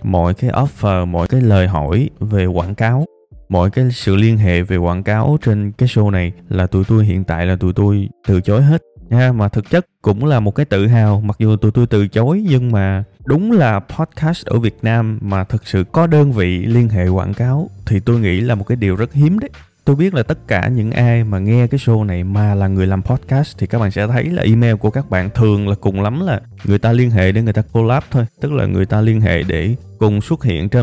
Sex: male